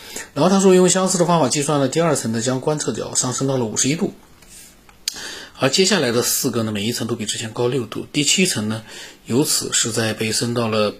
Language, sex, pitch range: Chinese, male, 110-135 Hz